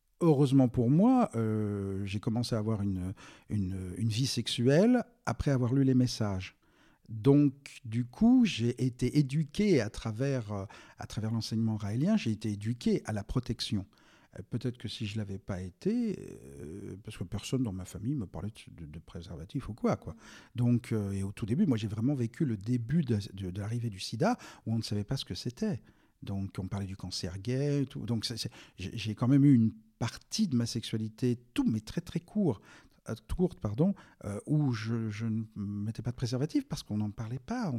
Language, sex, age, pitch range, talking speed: French, male, 50-69, 105-140 Hz, 200 wpm